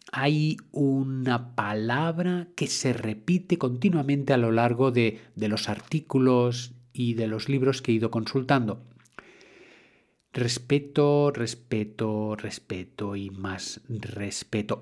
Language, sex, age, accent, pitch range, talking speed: Spanish, male, 40-59, Spanish, 110-140 Hz, 115 wpm